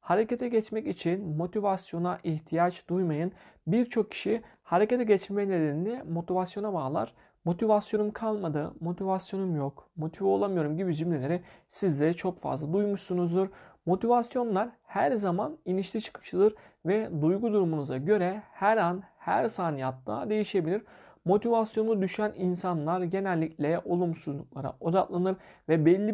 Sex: male